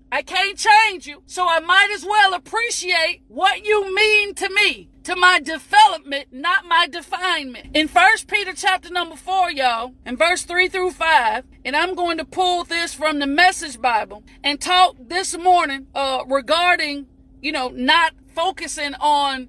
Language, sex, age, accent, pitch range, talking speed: English, female, 40-59, American, 295-370 Hz, 165 wpm